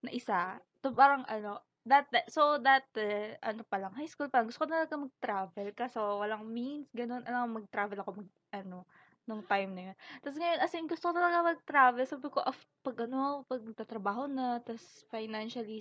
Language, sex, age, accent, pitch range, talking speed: Filipino, female, 20-39, native, 220-280 Hz, 195 wpm